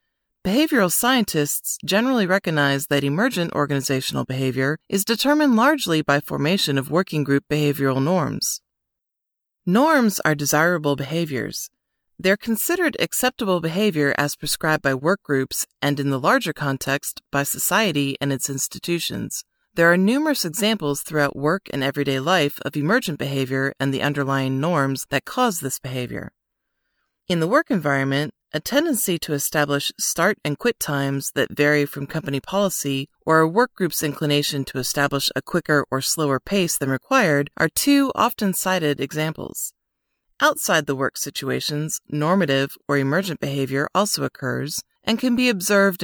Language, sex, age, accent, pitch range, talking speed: English, female, 30-49, American, 140-195 Hz, 145 wpm